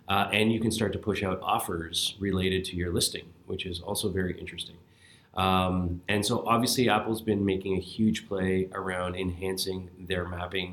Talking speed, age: 180 wpm, 30-49